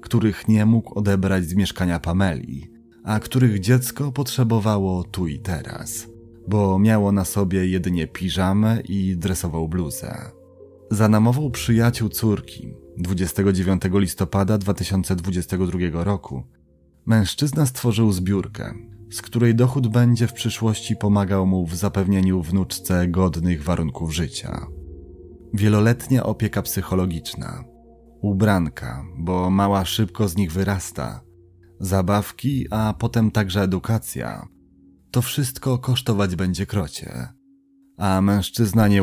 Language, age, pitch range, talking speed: Polish, 30-49, 90-115 Hz, 110 wpm